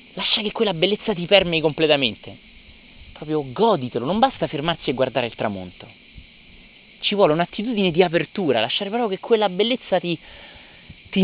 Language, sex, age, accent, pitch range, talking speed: Italian, male, 30-49, native, 125-185 Hz, 150 wpm